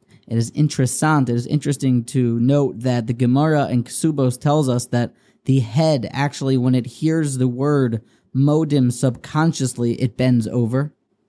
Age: 20-39